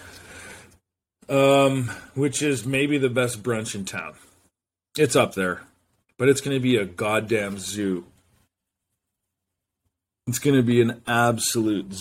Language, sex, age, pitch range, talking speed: English, male, 40-59, 95-120 Hz, 130 wpm